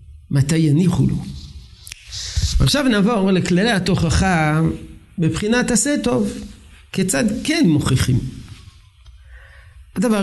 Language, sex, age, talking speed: Hebrew, male, 50-69, 80 wpm